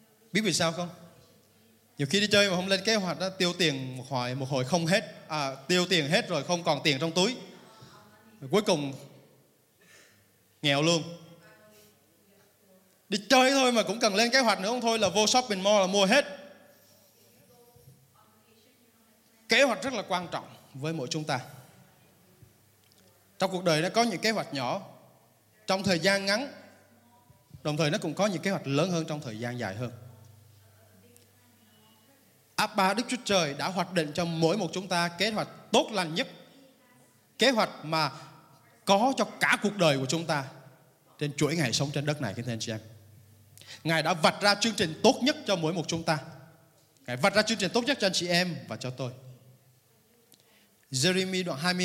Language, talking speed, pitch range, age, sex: Vietnamese, 190 wpm, 135-195 Hz, 20-39, male